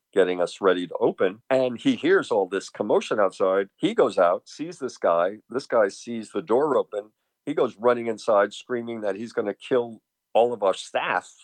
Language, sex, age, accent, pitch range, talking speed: English, male, 50-69, American, 95-130 Hz, 200 wpm